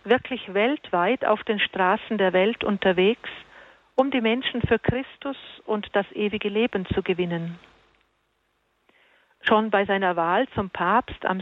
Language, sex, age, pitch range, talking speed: German, female, 40-59, 190-230 Hz, 135 wpm